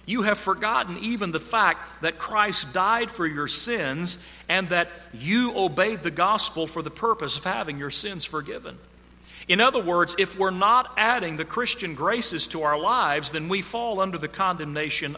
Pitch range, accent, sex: 130-180 Hz, American, male